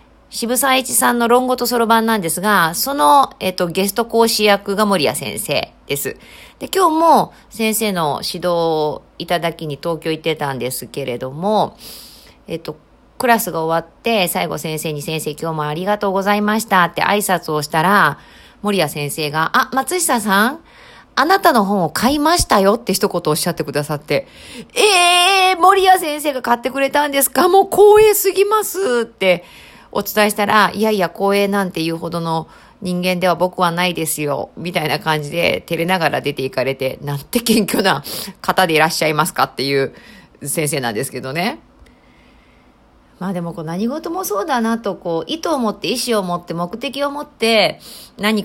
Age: 40-59